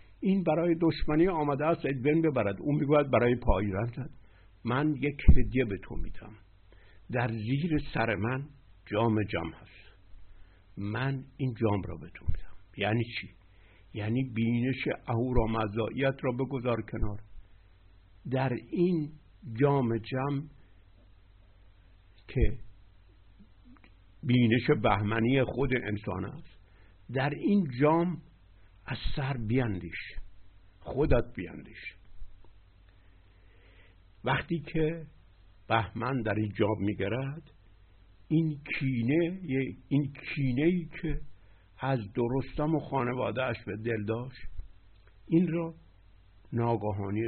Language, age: Persian, 60-79